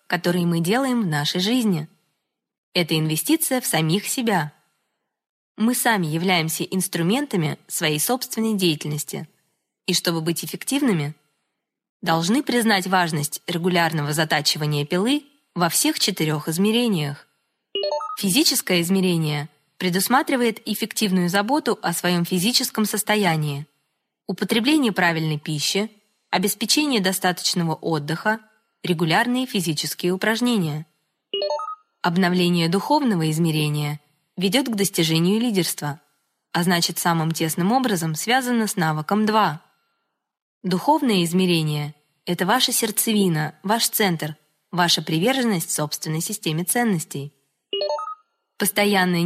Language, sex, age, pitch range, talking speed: Russian, female, 20-39, 160-220 Hz, 95 wpm